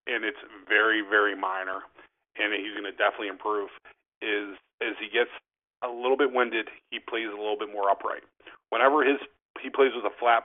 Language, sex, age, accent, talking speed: English, male, 40-59, American, 185 wpm